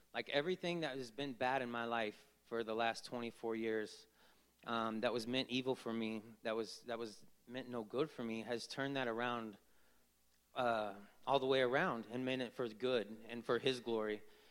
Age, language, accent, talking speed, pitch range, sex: 30-49, English, American, 200 wpm, 115-135 Hz, male